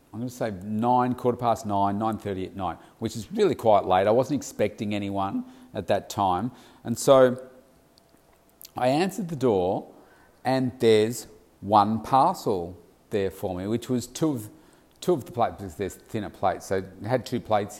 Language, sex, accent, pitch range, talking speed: English, male, Australian, 100-125 Hz, 175 wpm